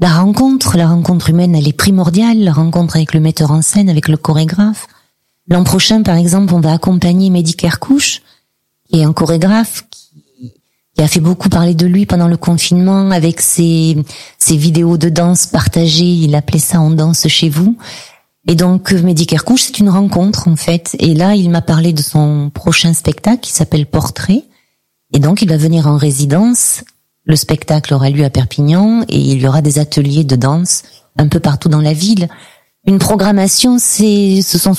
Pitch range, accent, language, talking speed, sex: 160-195 Hz, French, French, 195 wpm, female